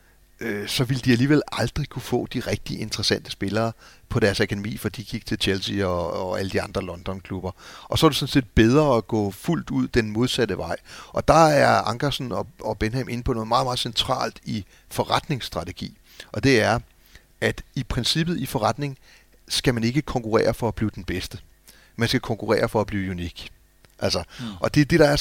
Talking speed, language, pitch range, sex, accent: 200 wpm, Danish, 105-130 Hz, male, native